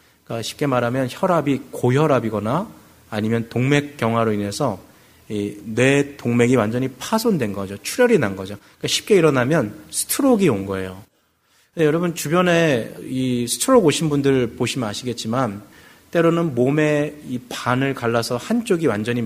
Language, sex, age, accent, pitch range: Korean, male, 30-49, native, 110-160 Hz